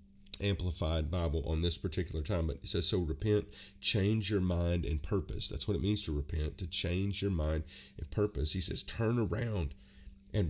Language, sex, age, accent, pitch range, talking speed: English, male, 40-59, American, 80-100 Hz, 190 wpm